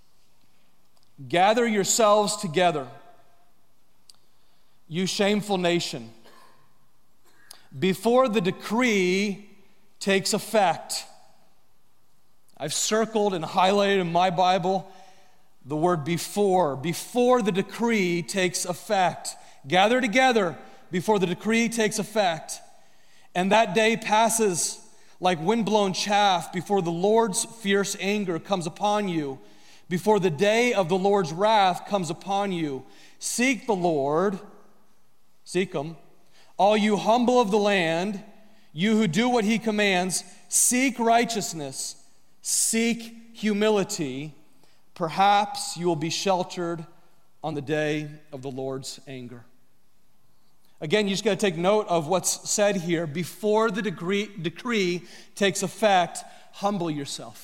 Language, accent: English, American